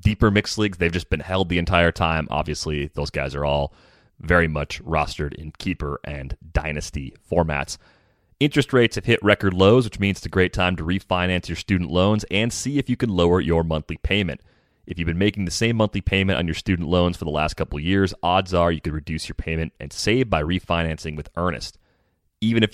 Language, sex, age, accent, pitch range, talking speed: English, male, 30-49, American, 80-100 Hz, 215 wpm